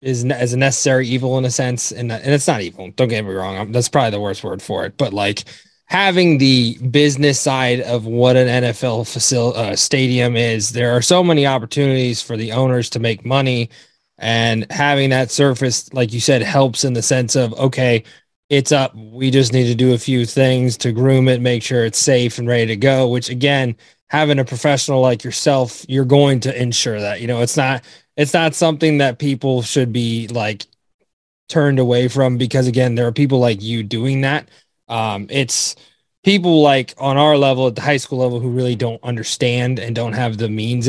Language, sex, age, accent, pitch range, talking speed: English, male, 20-39, American, 120-135 Hz, 210 wpm